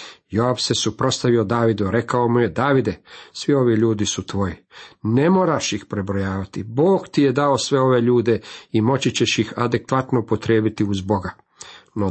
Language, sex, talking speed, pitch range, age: Croatian, male, 165 wpm, 110-135 Hz, 50-69